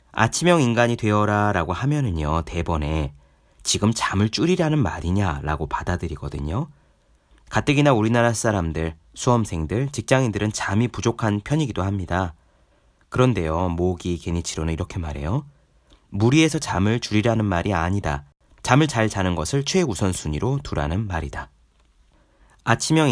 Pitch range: 80-120 Hz